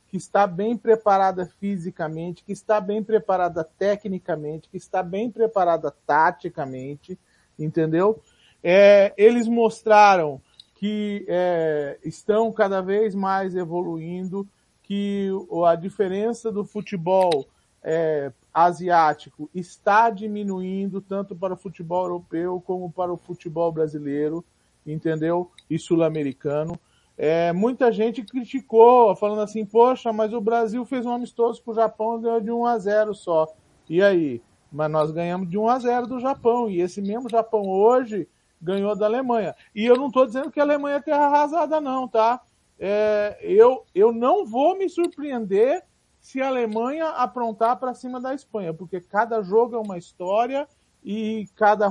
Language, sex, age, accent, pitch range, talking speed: Portuguese, male, 40-59, Brazilian, 175-230 Hz, 145 wpm